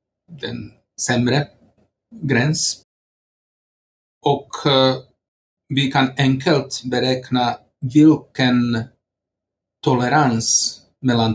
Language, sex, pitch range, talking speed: Swedish, male, 115-135 Hz, 60 wpm